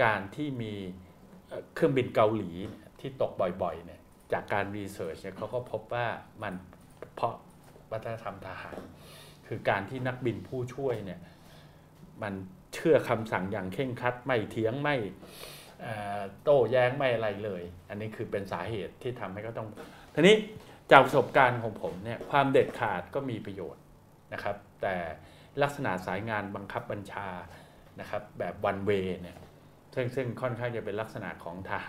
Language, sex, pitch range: Thai, male, 95-130 Hz